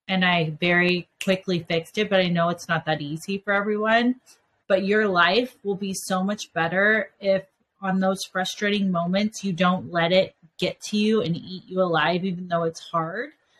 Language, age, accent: English, 30-49, American